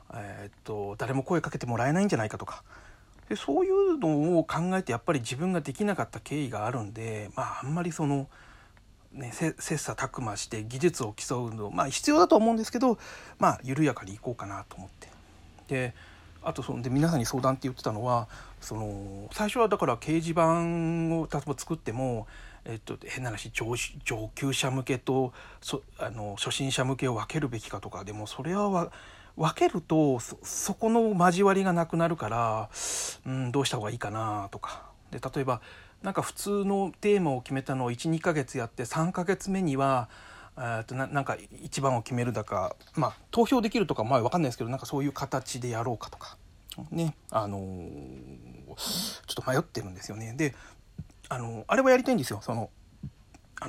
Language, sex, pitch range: Japanese, male, 110-165 Hz